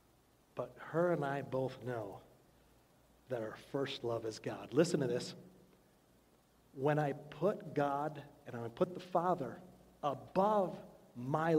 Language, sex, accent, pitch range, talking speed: English, male, American, 140-180 Hz, 135 wpm